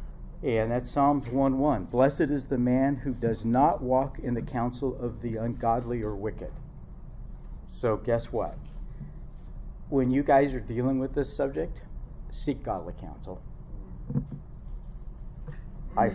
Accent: American